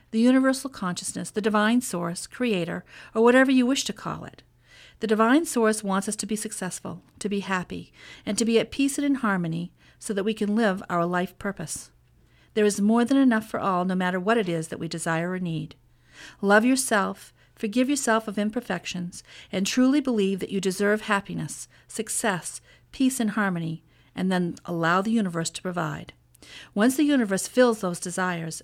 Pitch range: 180-230 Hz